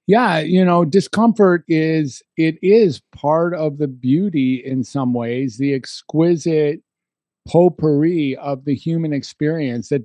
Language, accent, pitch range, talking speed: English, American, 125-160 Hz, 125 wpm